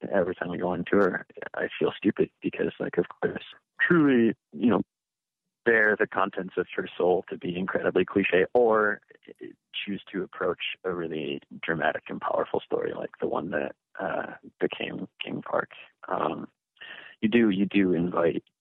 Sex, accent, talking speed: male, American, 160 wpm